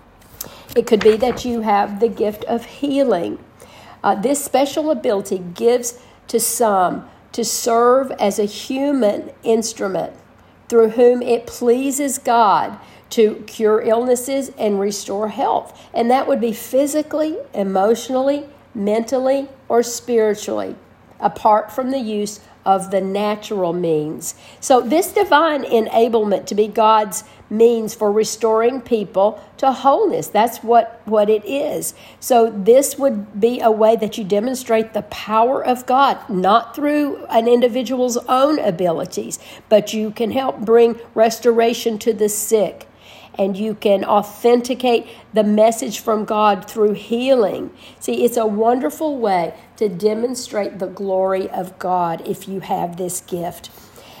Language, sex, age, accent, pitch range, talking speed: English, female, 50-69, American, 210-250 Hz, 135 wpm